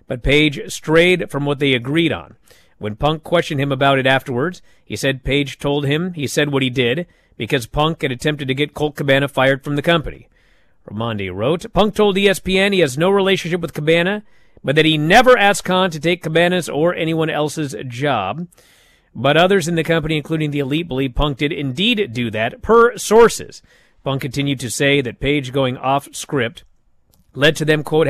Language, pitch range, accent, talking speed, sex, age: English, 130-160 Hz, American, 190 wpm, male, 40-59